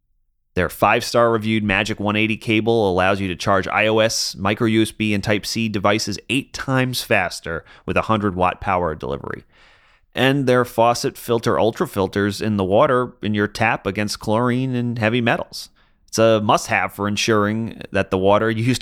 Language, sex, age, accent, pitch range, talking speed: English, male, 30-49, American, 100-125 Hz, 150 wpm